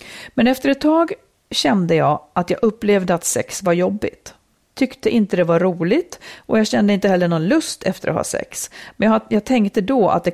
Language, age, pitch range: Swedish, 40-59, 175-240 Hz